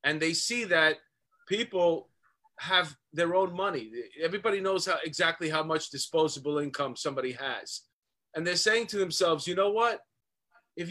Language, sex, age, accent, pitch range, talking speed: English, male, 30-49, American, 155-195 Hz, 150 wpm